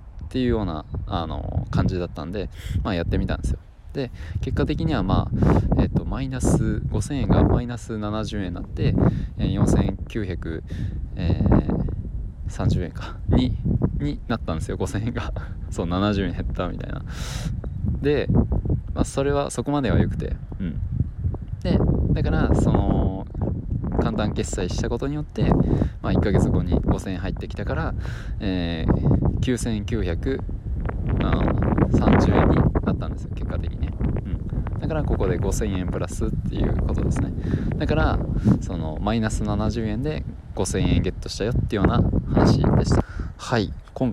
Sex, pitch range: male, 90-115 Hz